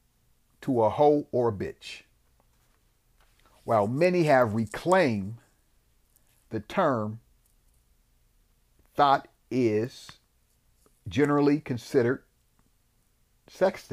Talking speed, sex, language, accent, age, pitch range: 75 wpm, male, English, American, 50-69, 95-135 Hz